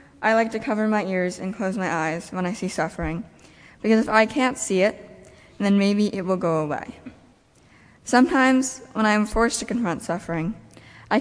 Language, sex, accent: English, female, American